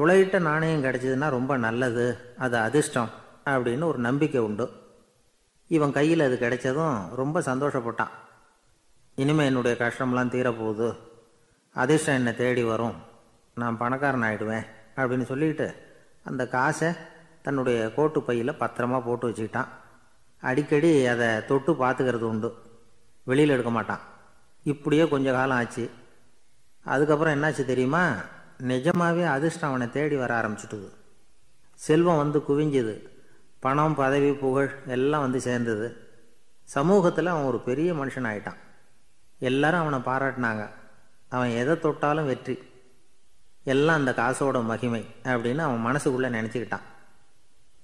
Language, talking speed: Tamil, 110 wpm